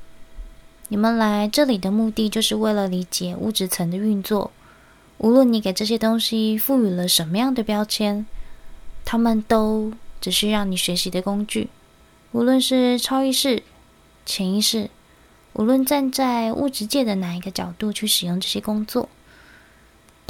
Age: 20-39